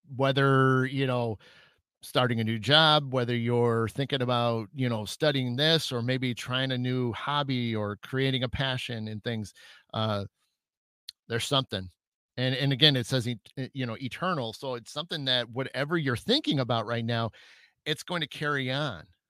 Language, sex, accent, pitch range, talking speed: English, male, American, 120-145 Hz, 165 wpm